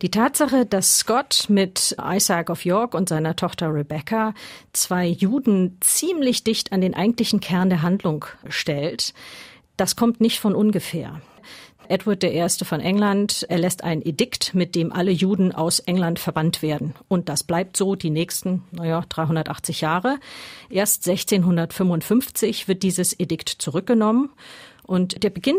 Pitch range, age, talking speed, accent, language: 170-205 Hz, 50-69, 145 wpm, German, German